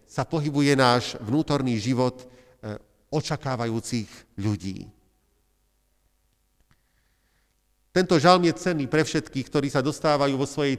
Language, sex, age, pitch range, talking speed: Slovak, male, 50-69, 125-185 Hz, 100 wpm